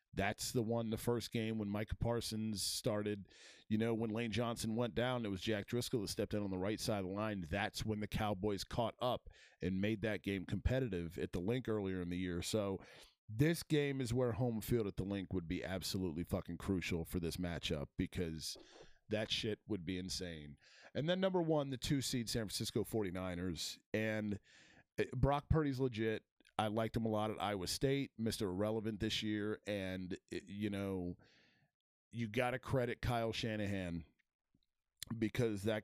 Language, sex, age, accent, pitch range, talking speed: English, male, 40-59, American, 95-115 Hz, 185 wpm